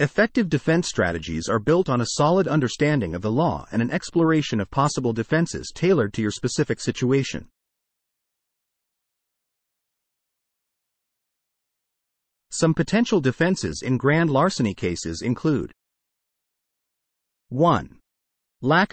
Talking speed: 105 wpm